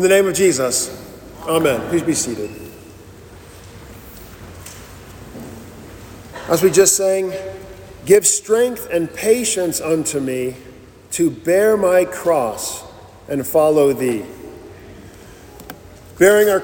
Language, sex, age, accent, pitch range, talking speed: English, male, 40-59, American, 140-185 Hz, 100 wpm